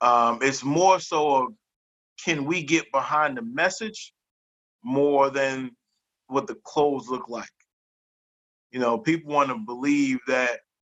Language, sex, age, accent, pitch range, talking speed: English, male, 30-49, American, 120-150 Hz, 140 wpm